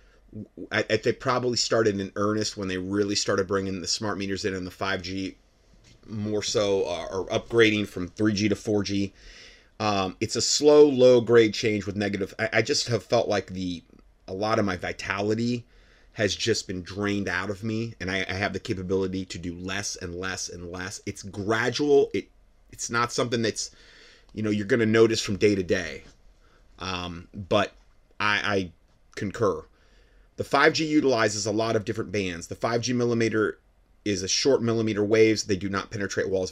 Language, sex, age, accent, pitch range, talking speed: English, male, 30-49, American, 95-110 Hz, 185 wpm